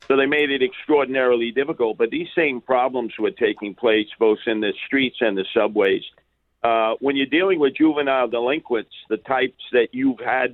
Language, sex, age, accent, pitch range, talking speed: English, male, 50-69, American, 125-165 Hz, 180 wpm